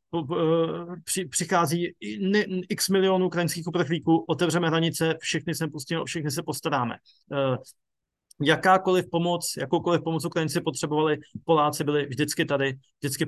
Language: Slovak